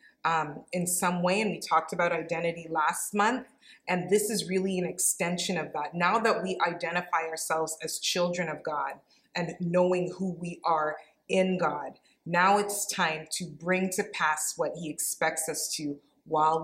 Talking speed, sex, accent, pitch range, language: 175 wpm, female, American, 155-180 Hz, English